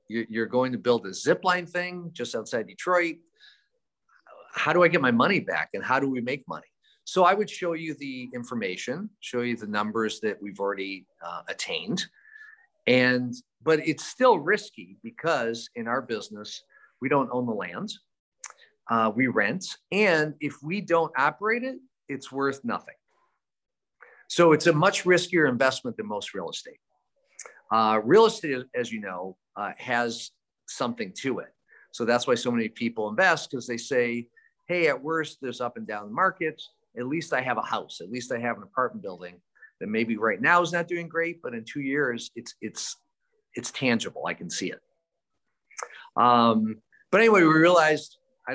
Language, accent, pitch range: English, American, 120-175 Hz